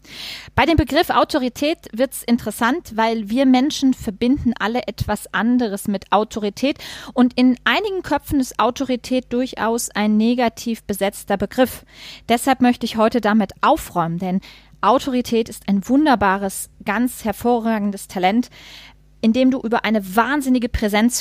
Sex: female